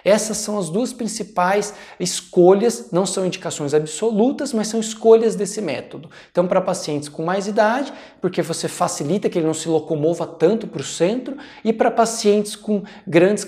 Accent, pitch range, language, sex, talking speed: Brazilian, 155-205 Hz, Portuguese, male, 170 wpm